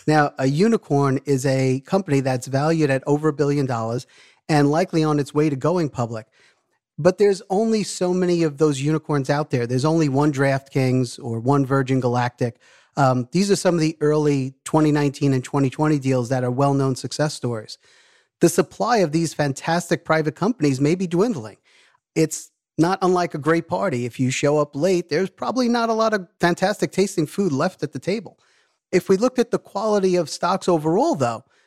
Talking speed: 190 wpm